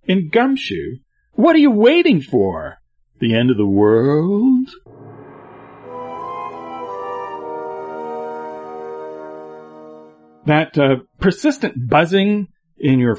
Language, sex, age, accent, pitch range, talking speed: English, male, 40-59, American, 115-170 Hz, 80 wpm